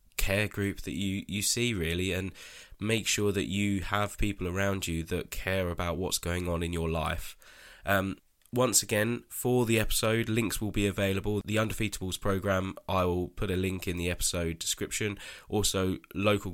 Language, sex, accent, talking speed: English, male, British, 180 wpm